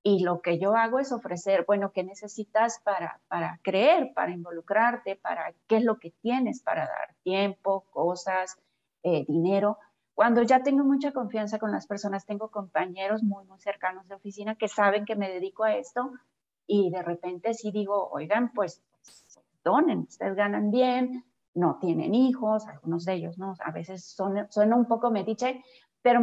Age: 30-49